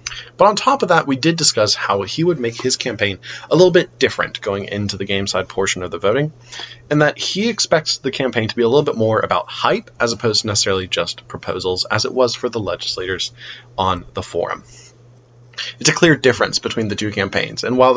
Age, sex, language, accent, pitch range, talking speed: 20-39, male, English, American, 110-145 Hz, 220 wpm